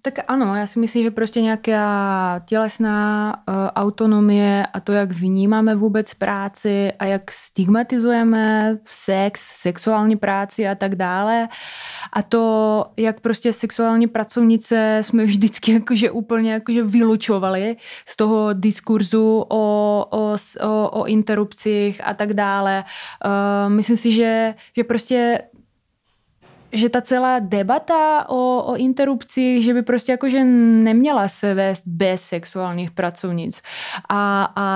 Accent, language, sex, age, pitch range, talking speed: native, Czech, female, 20-39, 200-225 Hz, 115 wpm